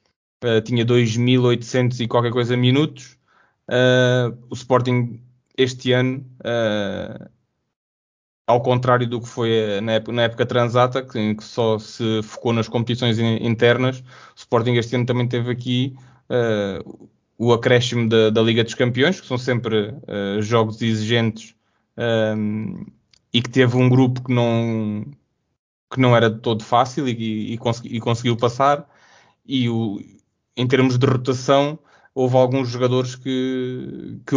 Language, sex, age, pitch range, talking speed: Portuguese, male, 20-39, 115-125 Hz, 125 wpm